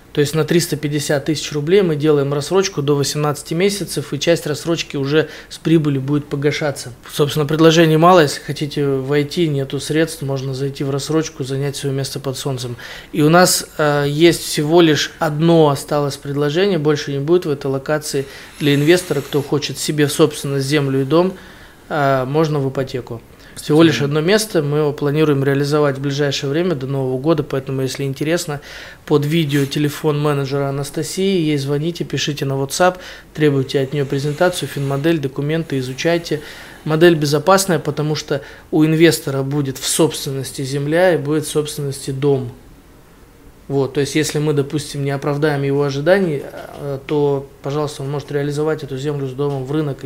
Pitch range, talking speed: 140-155 Hz, 165 wpm